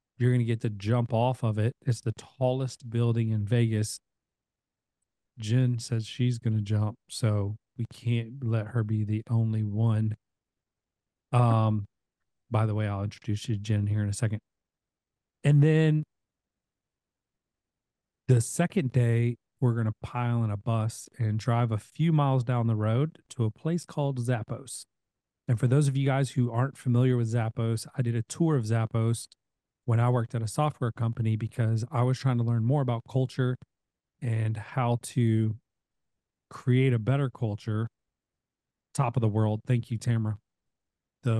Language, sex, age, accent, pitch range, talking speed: English, male, 40-59, American, 110-125 Hz, 170 wpm